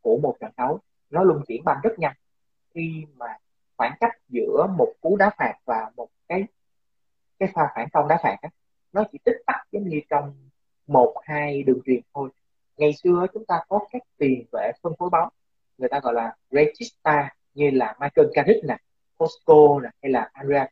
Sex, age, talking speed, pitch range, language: male, 20-39, 190 wpm, 130-195 Hz, Vietnamese